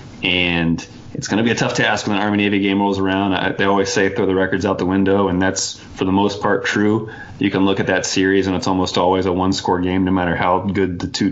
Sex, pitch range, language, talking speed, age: male, 90-100 Hz, English, 265 wpm, 20-39